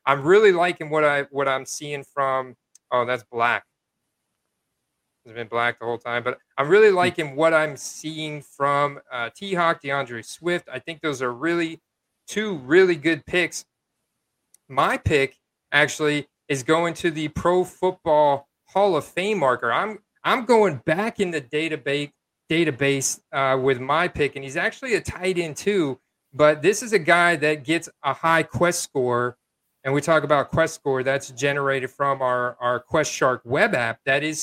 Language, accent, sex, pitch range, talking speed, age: English, American, male, 140-170 Hz, 175 wpm, 30-49